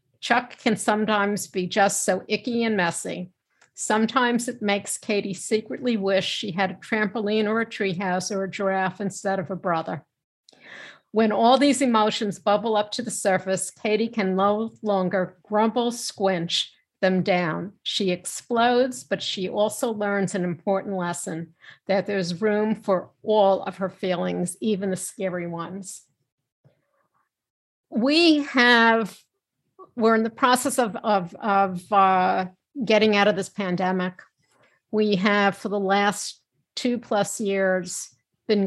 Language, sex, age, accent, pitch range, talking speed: English, female, 60-79, American, 185-225 Hz, 140 wpm